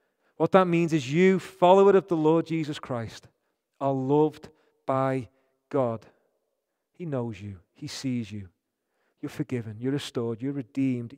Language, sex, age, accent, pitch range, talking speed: English, male, 40-59, British, 130-165 Hz, 145 wpm